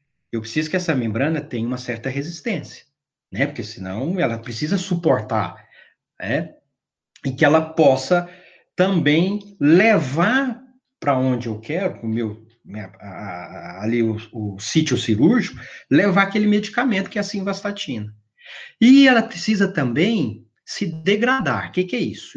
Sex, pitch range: male, 115-180 Hz